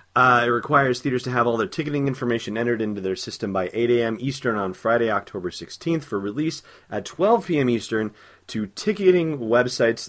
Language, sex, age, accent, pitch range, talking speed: English, male, 30-49, American, 100-130 Hz, 185 wpm